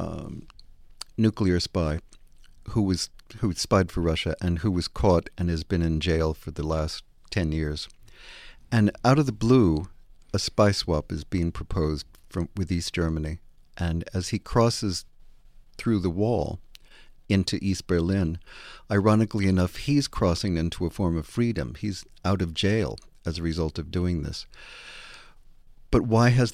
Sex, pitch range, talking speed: male, 85-105 Hz, 160 wpm